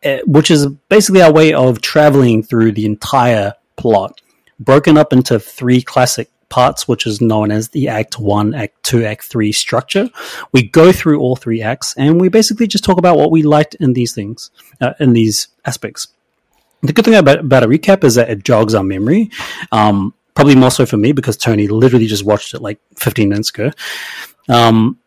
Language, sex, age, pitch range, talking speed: English, male, 30-49, 110-150 Hz, 195 wpm